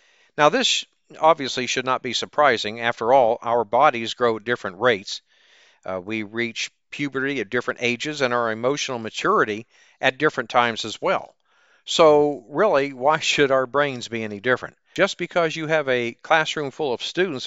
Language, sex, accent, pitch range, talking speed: English, male, American, 115-150 Hz, 170 wpm